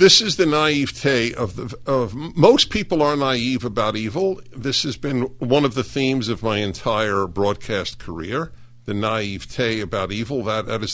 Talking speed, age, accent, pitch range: 175 wpm, 50-69, American, 115-135 Hz